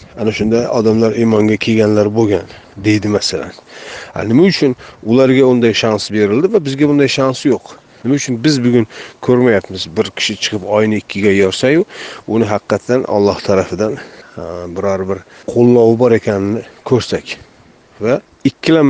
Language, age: Russian, 40-59